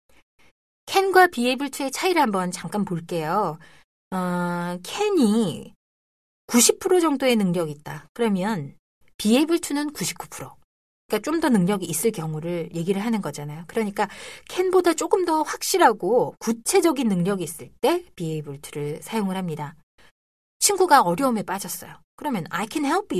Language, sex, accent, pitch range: Korean, female, native, 180-280 Hz